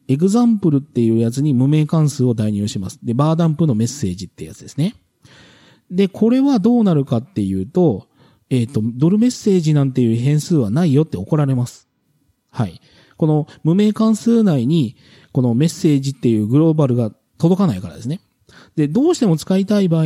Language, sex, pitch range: Japanese, male, 120-180 Hz